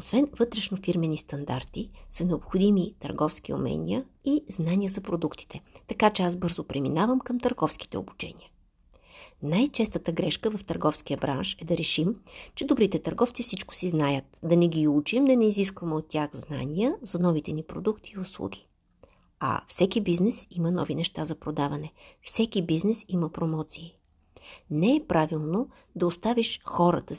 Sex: female